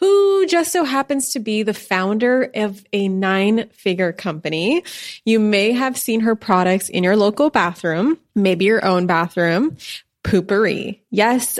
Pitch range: 190-240 Hz